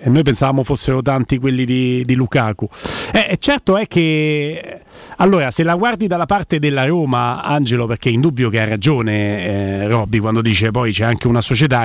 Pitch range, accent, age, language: 130-165 Hz, native, 40-59, Italian